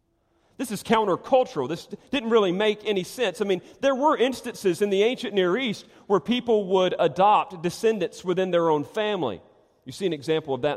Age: 40-59